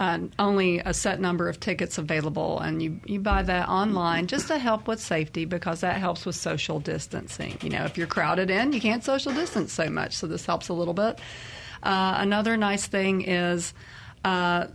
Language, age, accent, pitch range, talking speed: English, 40-59, American, 170-205 Hz, 200 wpm